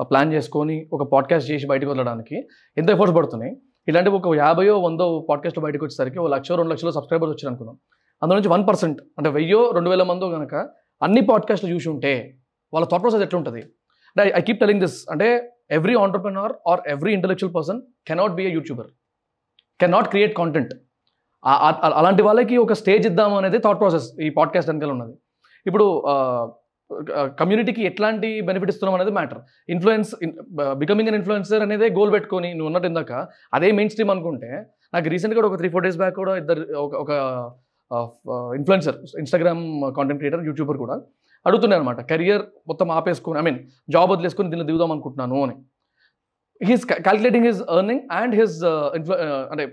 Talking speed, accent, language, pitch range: 155 wpm, native, Telugu, 145-205 Hz